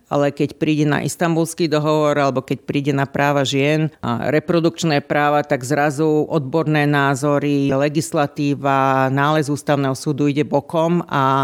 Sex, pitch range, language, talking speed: female, 135-150 Hz, Slovak, 135 wpm